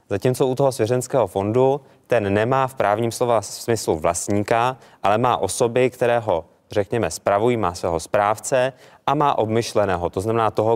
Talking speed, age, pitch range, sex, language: 155 wpm, 20-39, 100-125 Hz, male, Czech